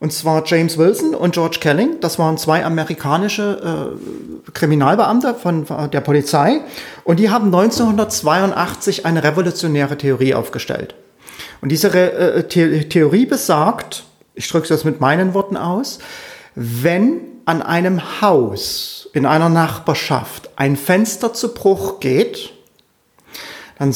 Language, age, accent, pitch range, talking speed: German, 40-59, German, 145-195 Hz, 130 wpm